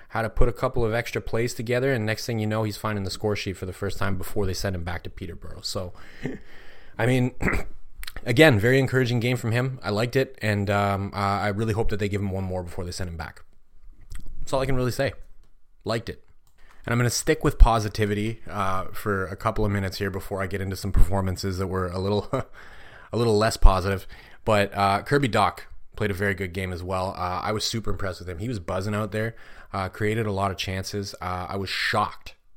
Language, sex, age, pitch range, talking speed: English, male, 20-39, 95-110 Hz, 235 wpm